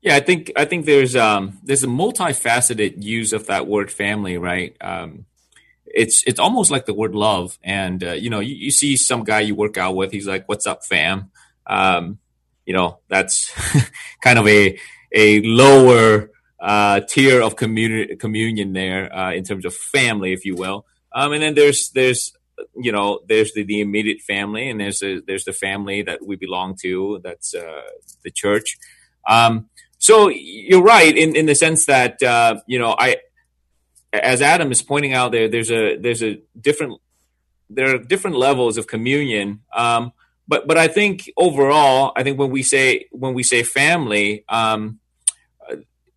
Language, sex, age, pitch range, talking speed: English, male, 30-49, 105-135 Hz, 180 wpm